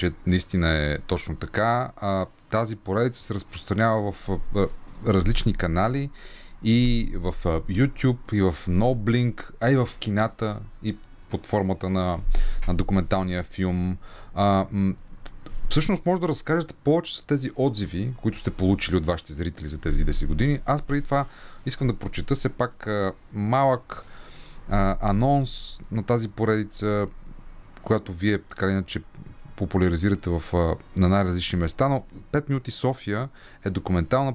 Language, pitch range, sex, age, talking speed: Bulgarian, 90-115 Hz, male, 30-49, 135 wpm